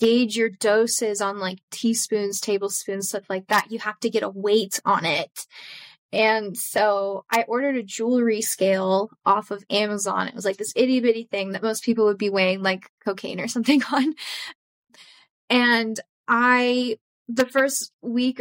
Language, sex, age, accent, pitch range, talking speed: English, female, 10-29, American, 205-230 Hz, 165 wpm